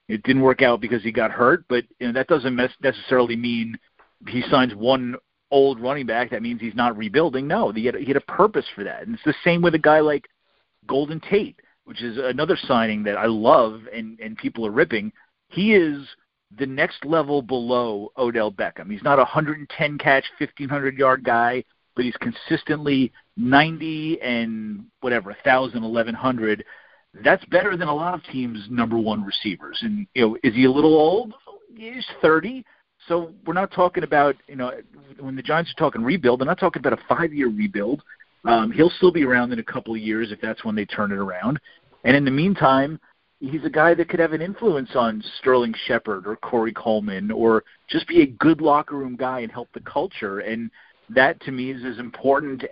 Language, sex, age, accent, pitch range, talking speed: English, male, 40-59, American, 120-160 Hz, 200 wpm